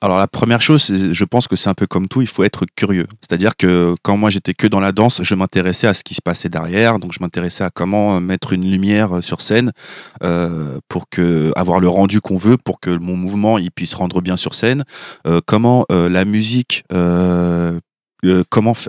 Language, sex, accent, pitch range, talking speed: French, male, French, 90-115 Hz, 205 wpm